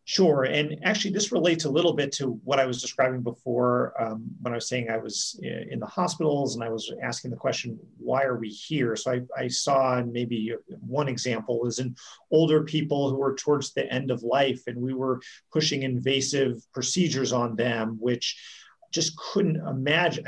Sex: male